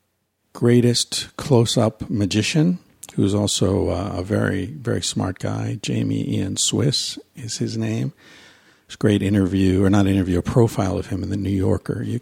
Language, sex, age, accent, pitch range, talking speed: English, male, 50-69, American, 100-125 Hz, 160 wpm